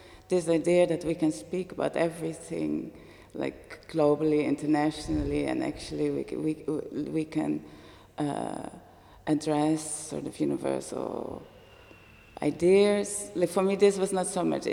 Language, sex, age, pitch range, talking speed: Dutch, female, 30-49, 150-180 Hz, 125 wpm